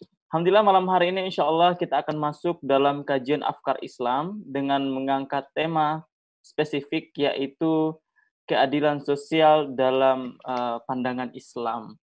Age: 20-39